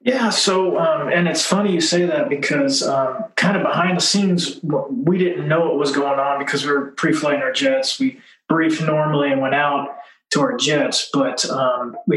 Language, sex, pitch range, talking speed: English, male, 140-200 Hz, 200 wpm